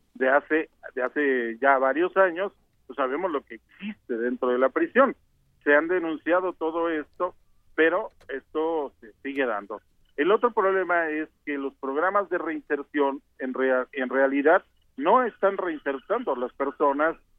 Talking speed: 155 wpm